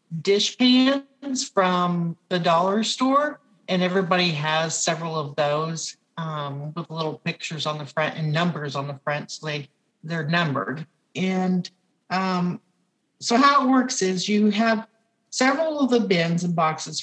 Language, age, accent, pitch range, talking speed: English, 50-69, American, 160-200 Hz, 150 wpm